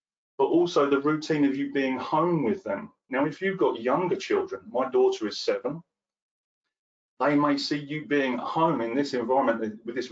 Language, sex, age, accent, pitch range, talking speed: English, male, 30-49, British, 130-180 Hz, 185 wpm